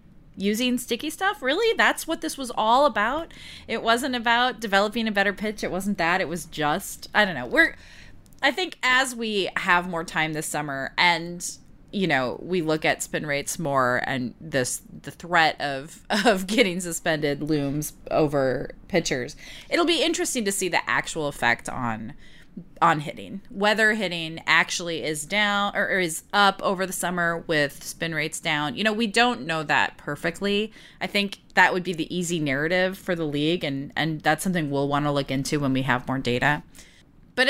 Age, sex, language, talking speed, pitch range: 30-49, female, English, 185 wpm, 155-210 Hz